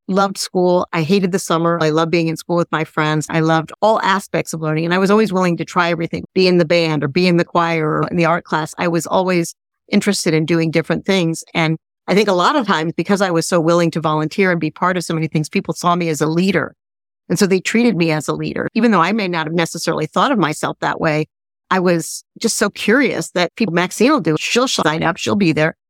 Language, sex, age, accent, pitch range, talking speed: English, female, 50-69, American, 160-185 Hz, 260 wpm